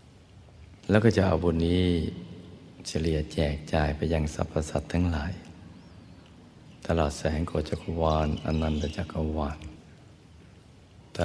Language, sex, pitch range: Thai, male, 75-85 Hz